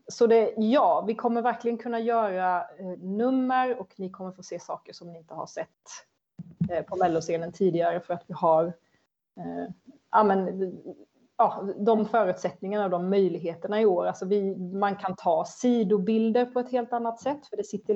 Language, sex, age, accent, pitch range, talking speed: Swedish, female, 30-49, native, 190-245 Hz, 150 wpm